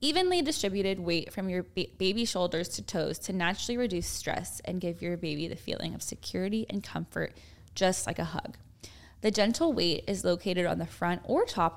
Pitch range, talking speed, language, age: 170-210 Hz, 190 wpm, English, 10-29